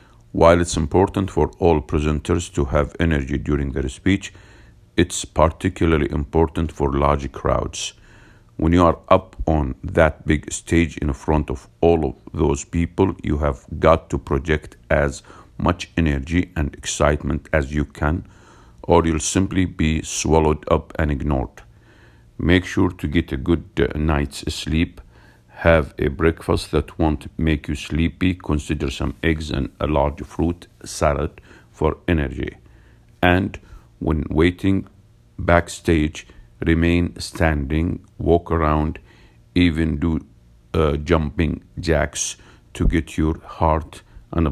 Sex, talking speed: male, 130 wpm